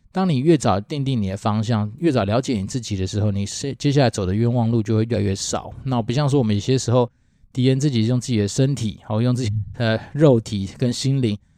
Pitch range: 105-135 Hz